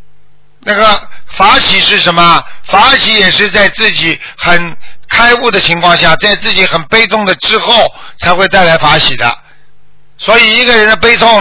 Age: 50-69